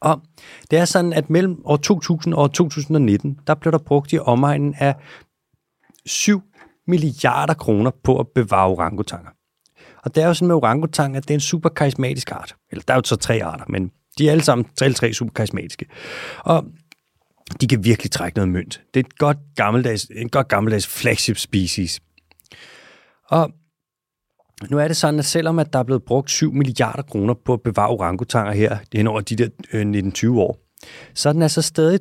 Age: 30-49